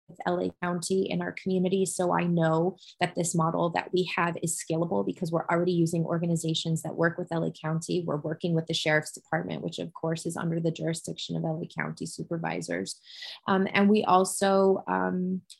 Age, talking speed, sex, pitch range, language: 20-39, 190 wpm, female, 165-185 Hz, English